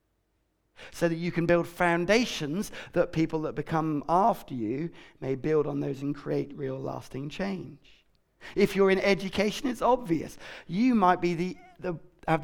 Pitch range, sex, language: 140-195 Hz, male, English